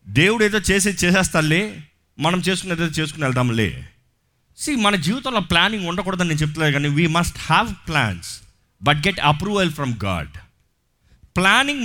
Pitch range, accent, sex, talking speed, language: 125-195 Hz, native, male, 135 wpm, Telugu